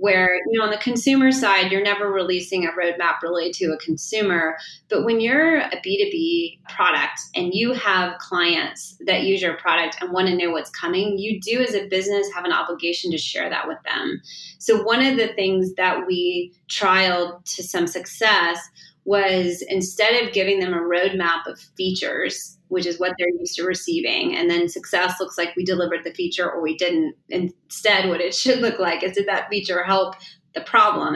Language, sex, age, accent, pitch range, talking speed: English, female, 30-49, American, 175-210 Hz, 195 wpm